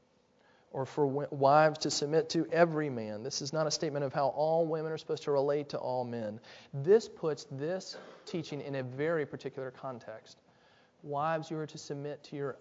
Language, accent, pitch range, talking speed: English, American, 125-155 Hz, 190 wpm